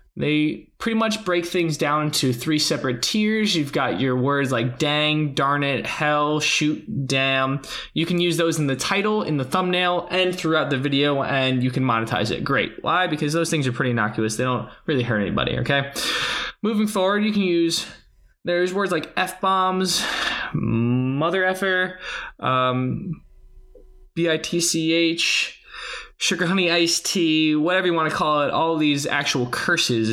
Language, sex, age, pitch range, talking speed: English, male, 20-39, 130-170 Hz, 160 wpm